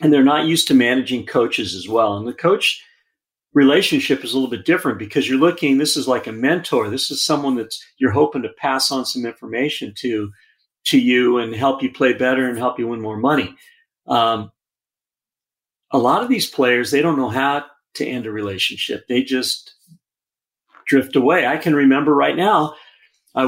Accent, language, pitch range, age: American, English, 120-145 Hz, 50-69